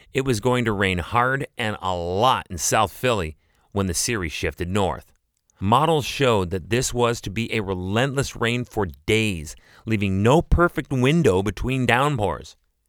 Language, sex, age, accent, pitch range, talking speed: English, male, 30-49, American, 90-125 Hz, 165 wpm